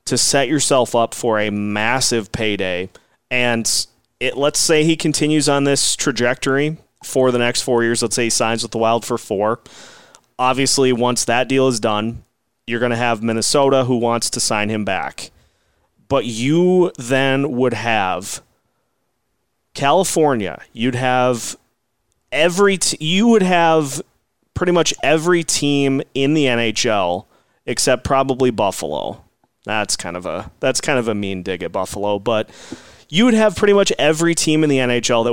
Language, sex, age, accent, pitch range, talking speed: English, male, 30-49, American, 115-140 Hz, 160 wpm